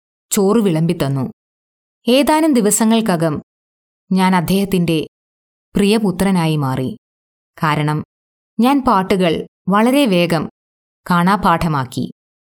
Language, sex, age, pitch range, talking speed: Malayalam, female, 20-39, 140-200 Hz, 65 wpm